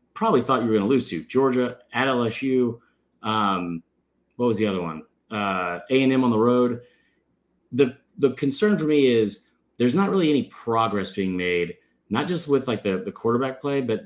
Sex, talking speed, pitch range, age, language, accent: male, 195 wpm, 110-150 Hz, 30-49, English, American